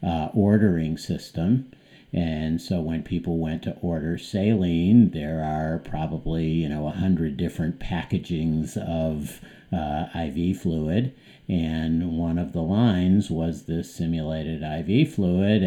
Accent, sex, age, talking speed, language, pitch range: American, male, 50-69, 130 wpm, English, 80-95 Hz